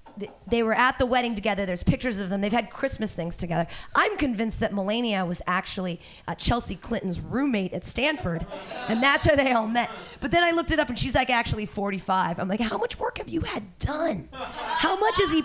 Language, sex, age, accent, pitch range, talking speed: English, female, 30-49, American, 205-310 Hz, 220 wpm